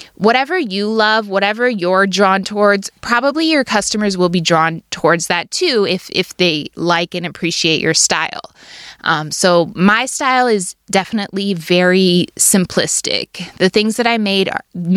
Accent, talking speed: American, 150 wpm